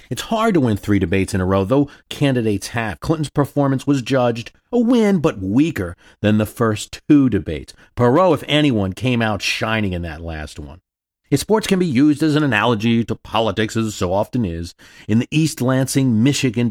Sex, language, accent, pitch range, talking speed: male, English, American, 100-145 Hz, 195 wpm